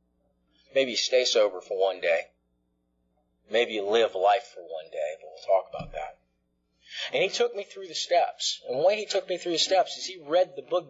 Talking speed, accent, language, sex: 220 wpm, American, English, male